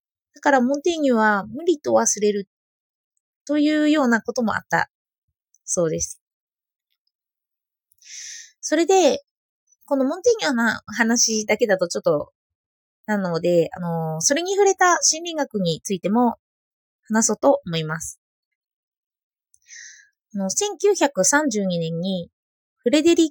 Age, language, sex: 20-39, Japanese, female